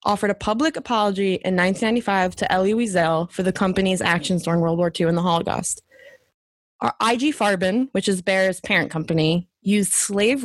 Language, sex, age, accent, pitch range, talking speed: English, female, 20-39, American, 185-220 Hz, 165 wpm